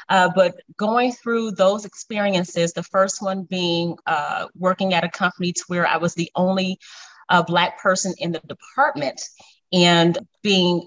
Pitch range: 165-190 Hz